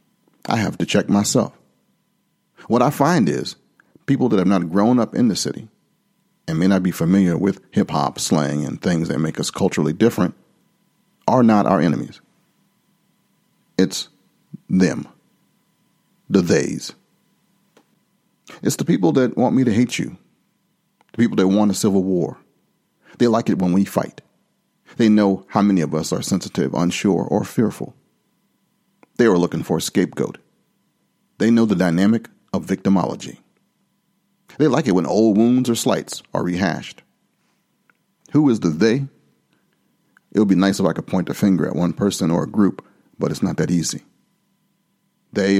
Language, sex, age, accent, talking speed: English, male, 40-59, American, 160 wpm